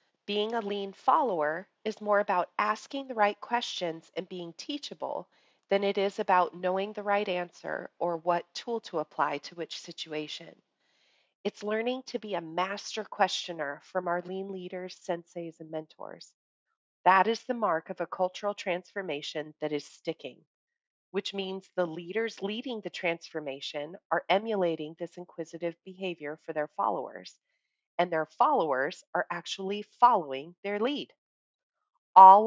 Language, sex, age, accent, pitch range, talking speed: English, female, 30-49, American, 165-205 Hz, 145 wpm